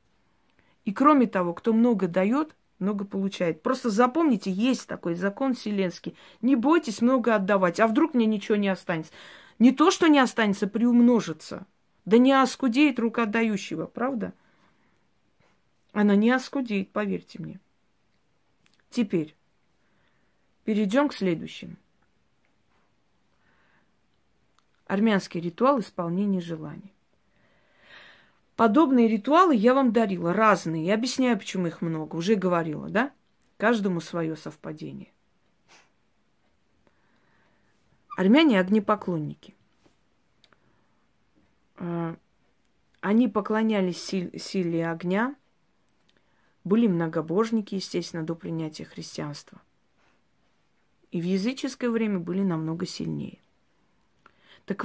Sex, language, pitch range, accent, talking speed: female, Russian, 175-240 Hz, native, 95 wpm